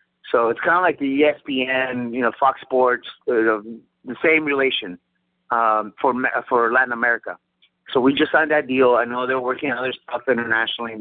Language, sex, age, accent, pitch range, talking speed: English, male, 30-49, American, 110-145 Hz, 185 wpm